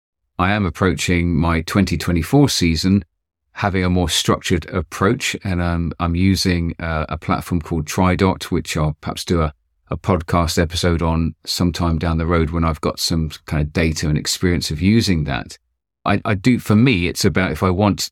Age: 40-59